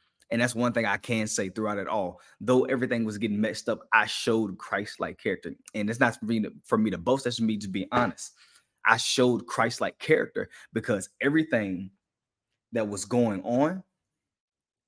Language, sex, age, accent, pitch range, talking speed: English, male, 20-39, American, 100-125 Hz, 175 wpm